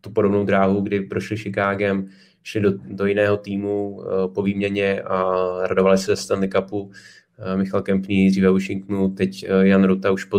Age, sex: 20-39, male